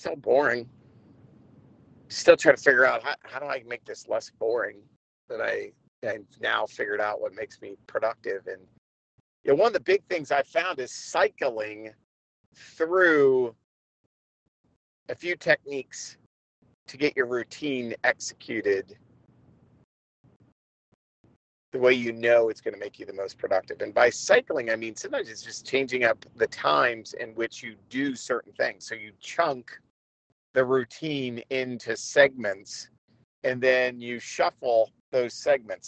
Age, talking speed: 40-59, 150 wpm